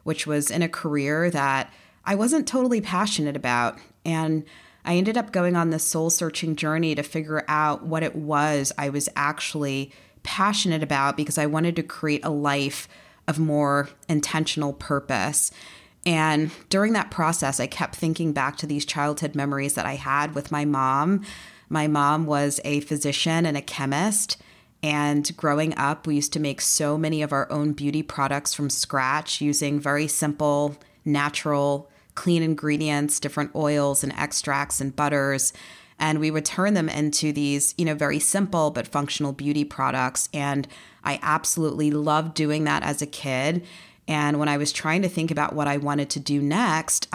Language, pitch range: English, 145-160 Hz